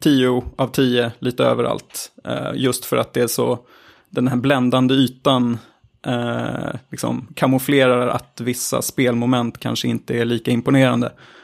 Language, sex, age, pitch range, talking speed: Swedish, male, 20-39, 125-140 Hz, 135 wpm